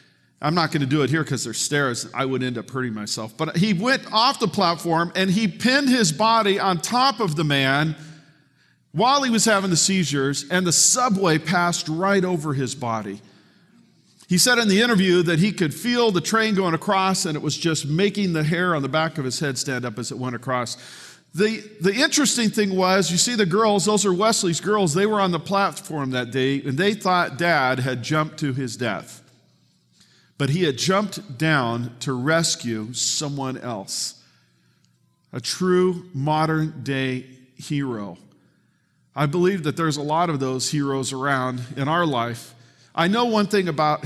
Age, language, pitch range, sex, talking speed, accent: 50-69, English, 130-185 Hz, male, 190 wpm, American